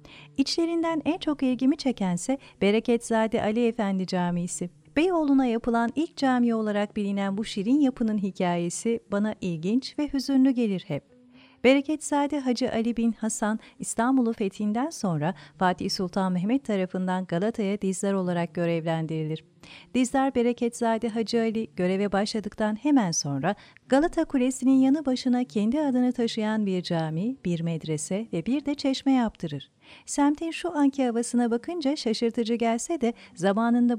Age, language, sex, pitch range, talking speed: 40-59, Turkish, female, 195-255 Hz, 130 wpm